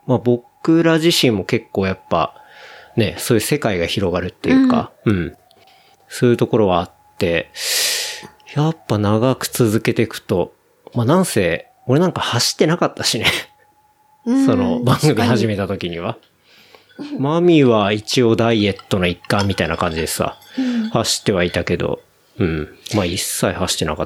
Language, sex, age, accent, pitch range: Japanese, male, 40-59, native, 105-170 Hz